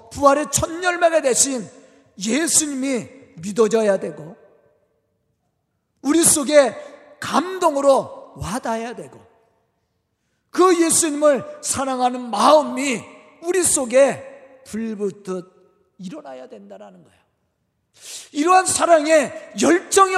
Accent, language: native, Korean